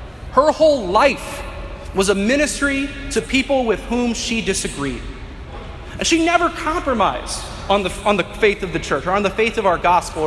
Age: 30-49